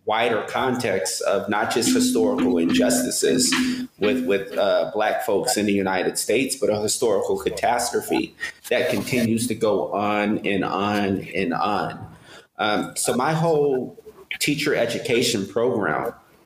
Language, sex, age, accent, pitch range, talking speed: English, male, 30-49, American, 105-170 Hz, 130 wpm